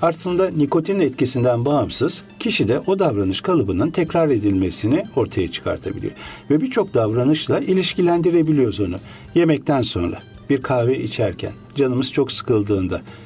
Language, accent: Turkish, native